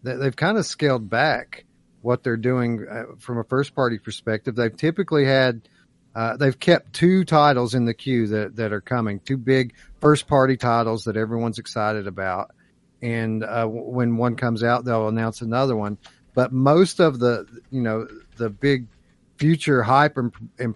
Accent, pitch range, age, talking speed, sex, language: American, 110-145 Hz, 50-69, 175 wpm, male, English